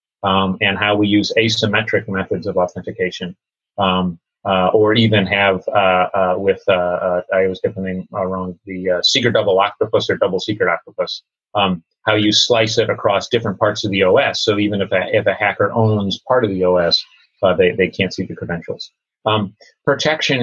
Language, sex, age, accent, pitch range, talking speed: English, male, 30-49, American, 95-115 Hz, 190 wpm